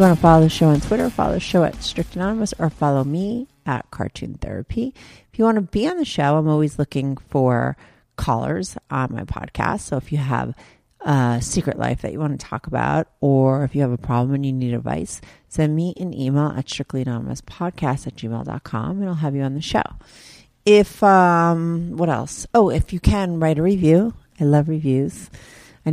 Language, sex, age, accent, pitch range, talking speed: English, female, 40-59, American, 130-170 Hz, 205 wpm